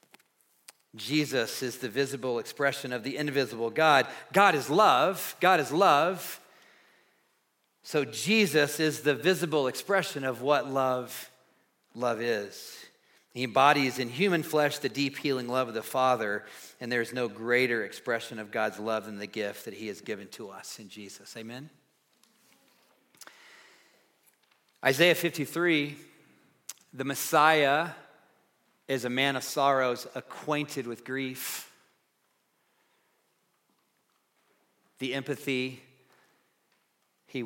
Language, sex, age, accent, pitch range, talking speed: English, male, 40-59, American, 125-150 Hz, 120 wpm